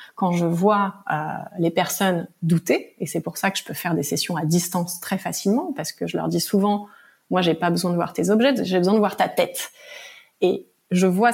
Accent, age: French, 30-49